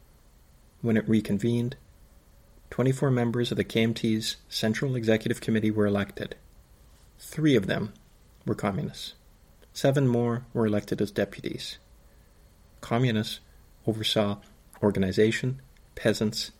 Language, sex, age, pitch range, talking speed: English, male, 50-69, 100-120 Hz, 100 wpm